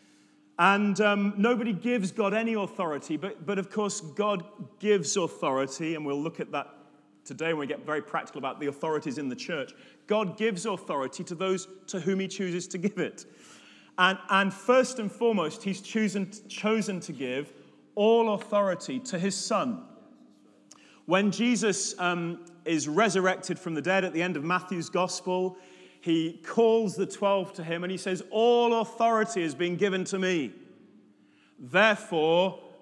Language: English